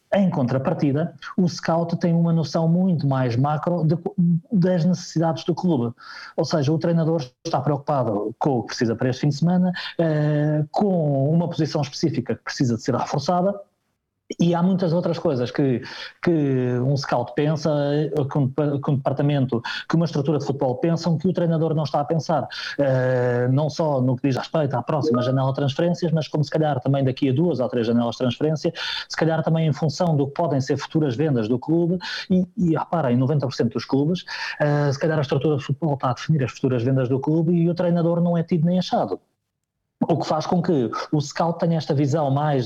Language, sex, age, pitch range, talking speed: Portuguese, male, 20-39, 135-165 Hz, 195 wpm